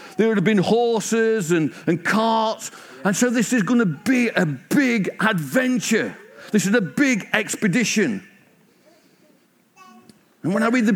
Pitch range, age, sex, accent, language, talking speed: 180-225 Hz, 50-69, male, British, English, 155 wpm